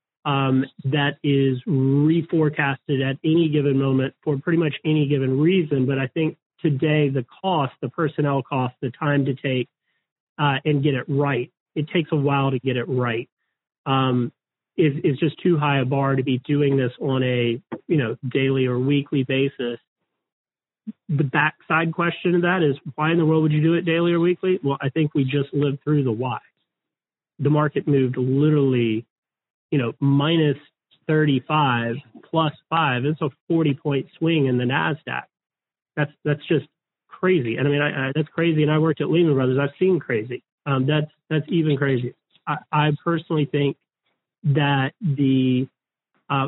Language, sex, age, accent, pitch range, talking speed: English, male, 40-59, American, 135-155 Hz, 175 wpm